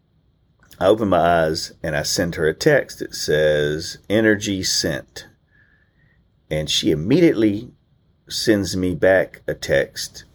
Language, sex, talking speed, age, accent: English, male, 130 wpm, 40-59, American